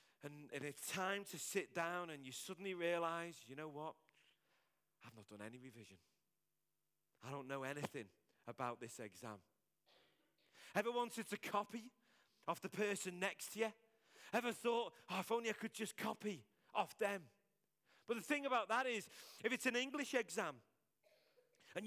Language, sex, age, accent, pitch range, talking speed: English, male, 40-59, British, 165-240 Hz, 160 wpm